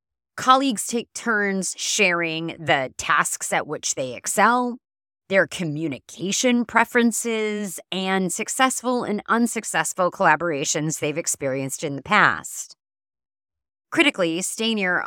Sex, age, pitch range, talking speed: female, 30-49, 150-210 Hz, 100 wpm